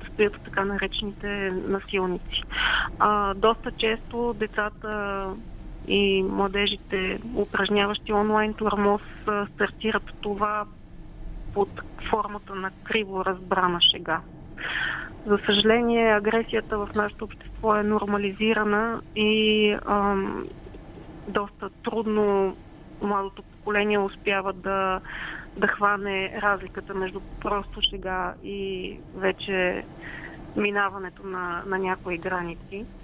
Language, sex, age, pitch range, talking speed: Bulgarian, female, 30-49, 185-210 Hz, 90 wpm